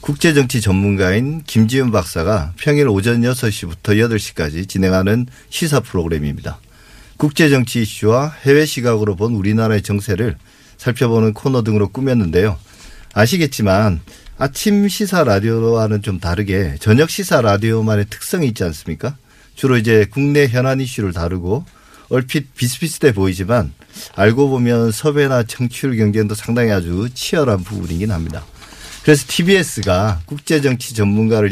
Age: 40-59